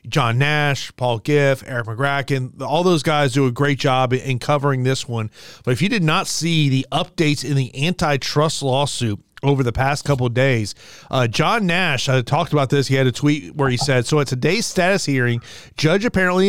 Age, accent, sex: 30-49, American, male